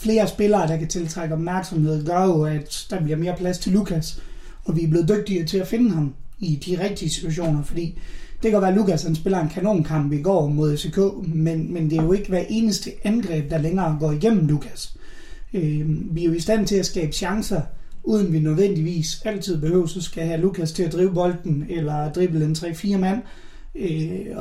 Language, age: Danish, 30-49